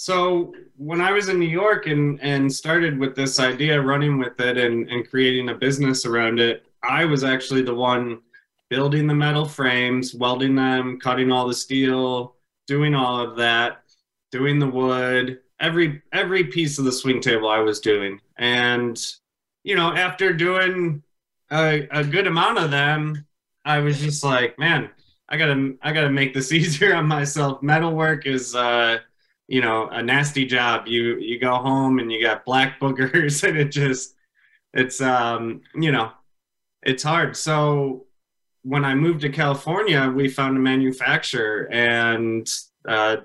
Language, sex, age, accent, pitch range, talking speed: English, male, 20-39, American, 125-150 Hz, 165 wpm